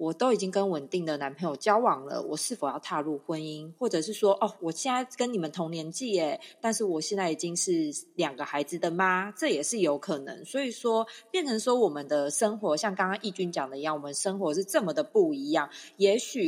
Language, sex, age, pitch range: Chinese, female, 30-49, 165-250 Hz